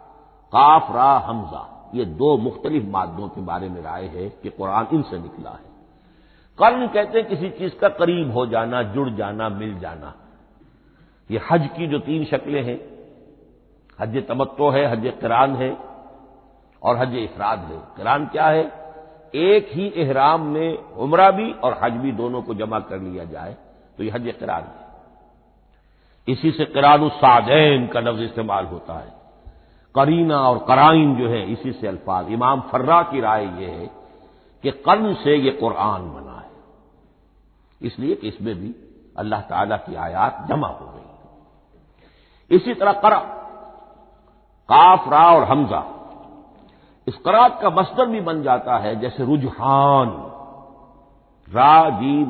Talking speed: 145 wpm